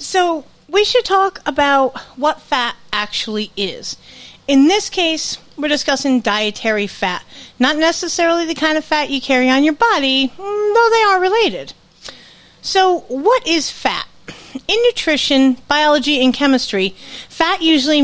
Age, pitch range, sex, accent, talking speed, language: 40-59, 215-300 Hz, female, American, 140 wpm, English